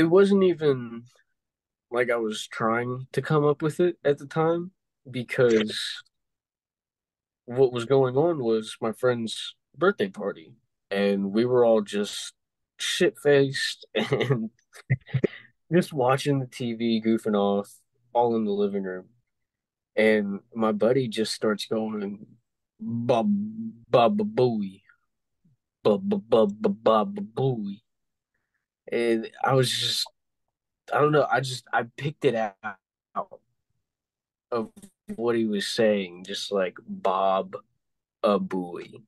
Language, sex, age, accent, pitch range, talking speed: English, male, 20-39, American, 110-140 Hz, 115 wpm